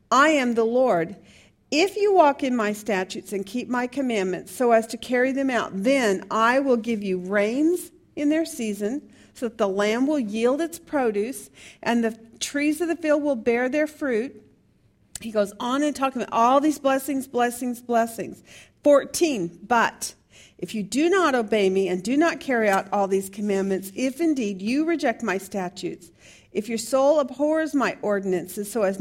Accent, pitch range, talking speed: American, 210-275 Hz, 180 wpm